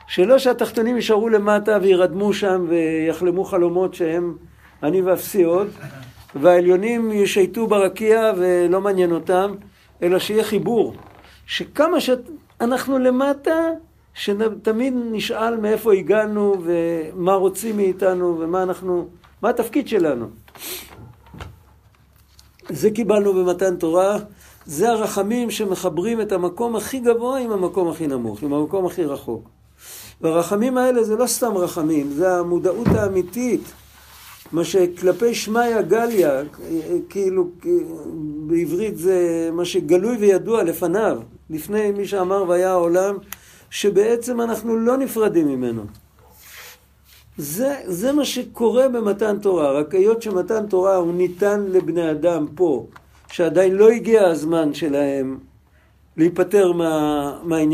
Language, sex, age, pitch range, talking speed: Hebrew, male, 50-69, 175-225 Hz, 110 wpm